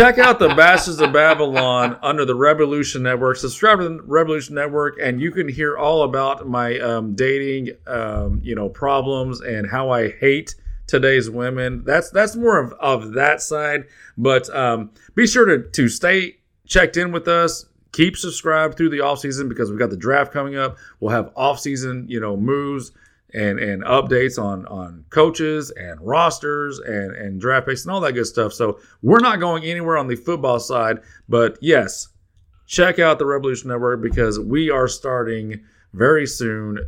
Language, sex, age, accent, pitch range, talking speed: English, male, 40-59, American, 110-155 Hz, 175 wpm